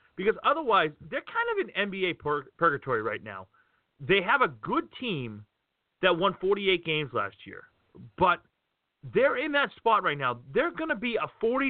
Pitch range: 145-200 Hz